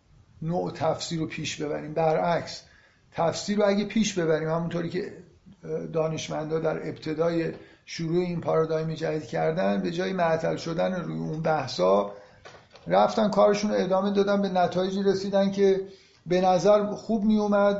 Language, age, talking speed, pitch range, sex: Persian, 50-69, 140 wpm, 155-180 Hz, male